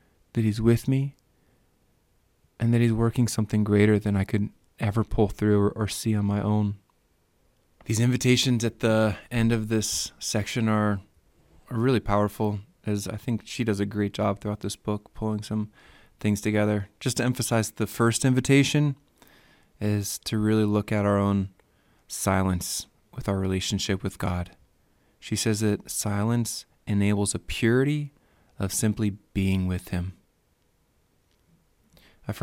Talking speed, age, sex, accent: 150 wpm, 20-39, male, American